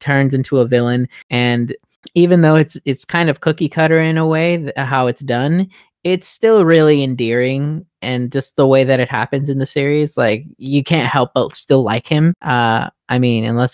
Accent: American